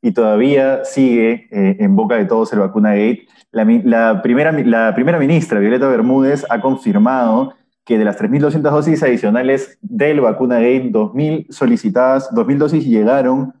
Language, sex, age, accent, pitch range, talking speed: Spanish, male, 20-39, Argentinian, 125-190 Hz, 155 wpm